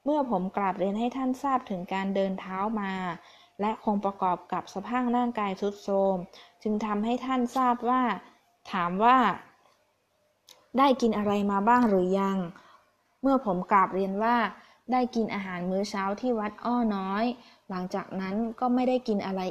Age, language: 20-39, Thai